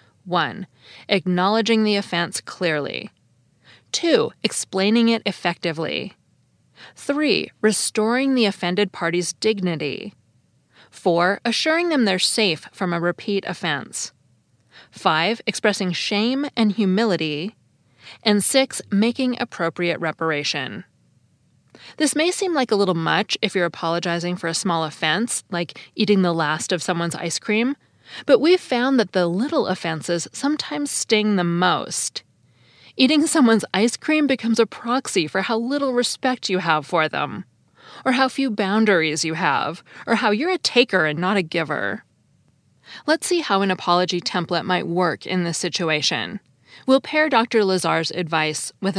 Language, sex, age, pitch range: English, female, 20-39, 170-230 Hz